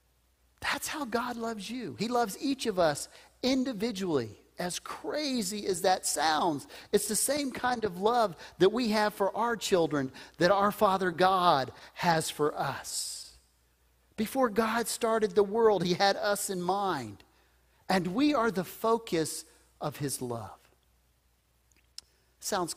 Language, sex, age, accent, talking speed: English, male, 40-59, American, 140 wpm